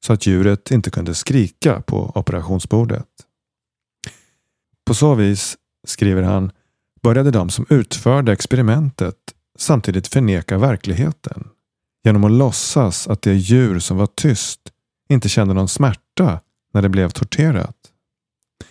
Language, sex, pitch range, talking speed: Swedish, male, 95-125 Hz, 120 wpm